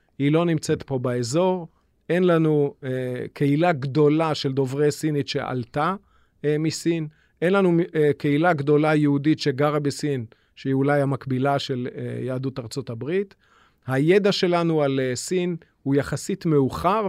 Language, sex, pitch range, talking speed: Hebrew, male, 135-165 Hz, 140 wpm